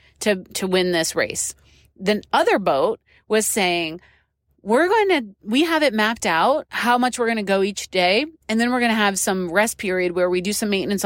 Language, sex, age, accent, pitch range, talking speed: English, female, 30-49, American, 185-235 Hz, 215 wpm